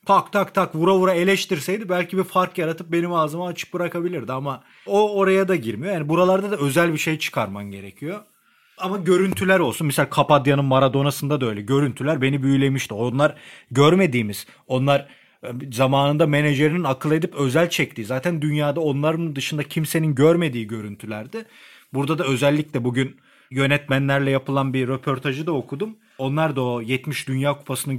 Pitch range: 130-170 Hz